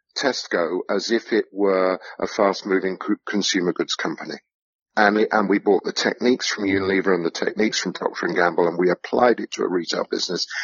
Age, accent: 50-69, British